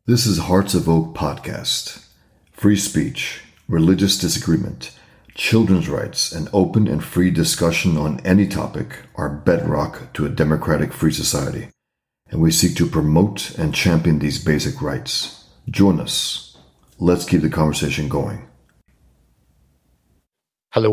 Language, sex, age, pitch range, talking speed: English, male, 40-59, 100-120 Hz, 130 wpm